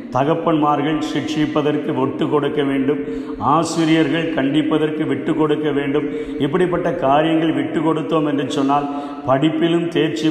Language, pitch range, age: Tamil, 150-180 Hz, 50-69